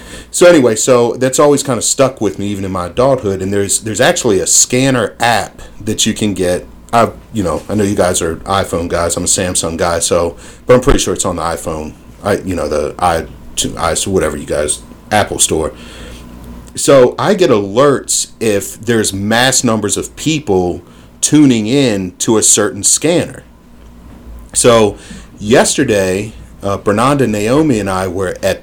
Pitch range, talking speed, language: 85-110 Hz, 175 wpm, English